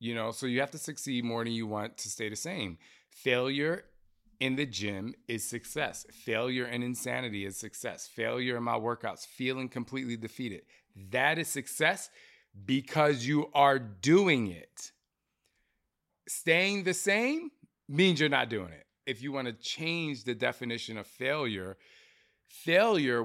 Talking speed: 150 wpm